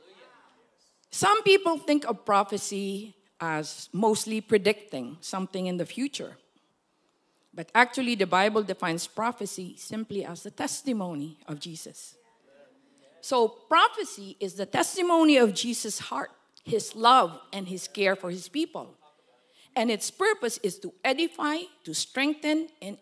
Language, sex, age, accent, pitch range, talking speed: English, female, 40-59, Filipino, 195-280 Hz, 130 wpm